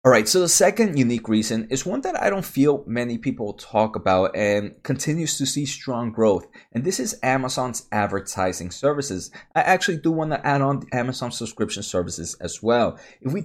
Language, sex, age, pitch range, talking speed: English, male, 20-39, 110-145 Hz, 190 wpm